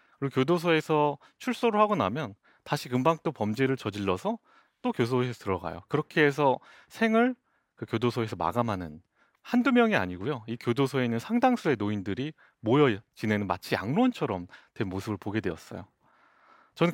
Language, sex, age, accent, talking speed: English, male, 30-49, Korean, 130 wpm